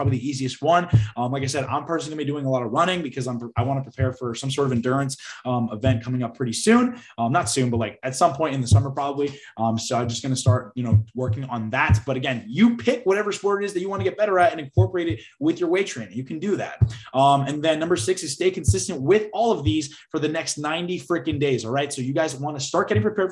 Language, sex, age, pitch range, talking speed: English, male, 20-39, 125-160 Hz, 290 wpm